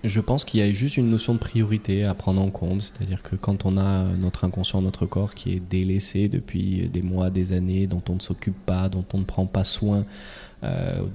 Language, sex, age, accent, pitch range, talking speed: French, male, 20-39, French, 90-105 Hz, 230 wpm